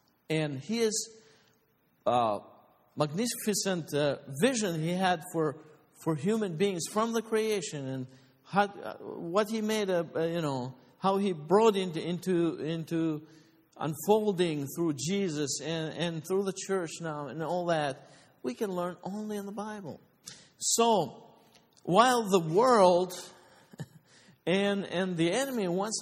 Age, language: 50-69, English